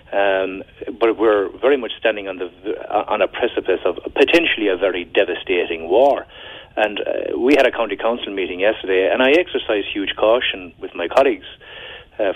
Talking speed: 170 wpm